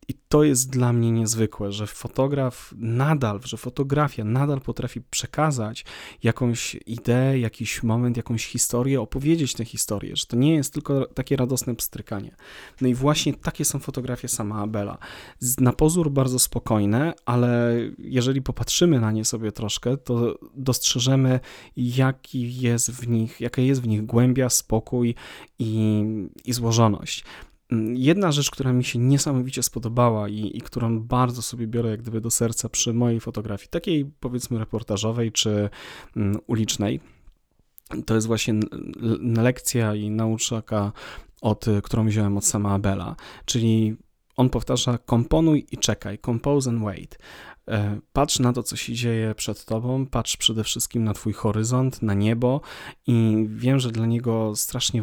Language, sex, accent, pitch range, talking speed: Polish, male, native, 110-125 Hz, 140 wpm